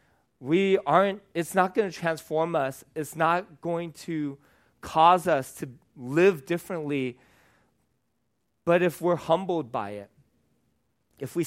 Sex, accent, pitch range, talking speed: male, American, 125-165 Hz, 130 wpm